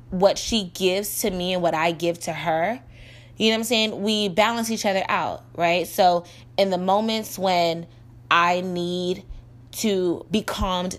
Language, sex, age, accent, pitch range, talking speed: English, female, 20-39, American, 155-200 Hz, 175 wpm